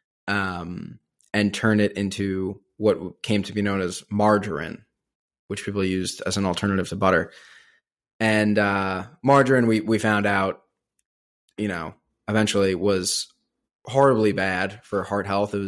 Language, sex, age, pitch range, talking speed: English, male, 20-39, 95-110 Hz, 140 wpm